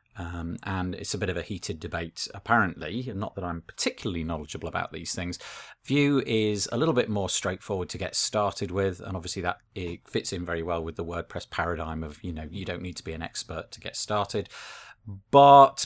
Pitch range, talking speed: 90-115 Hz, 210 wpm